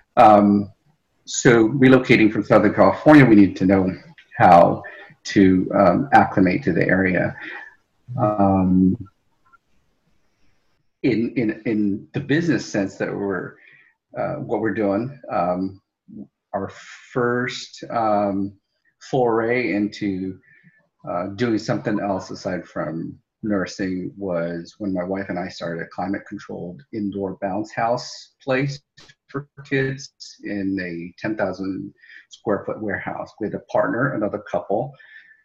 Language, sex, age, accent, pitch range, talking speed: English, male, 40-59, American, 95-125 Hz, 120 wpm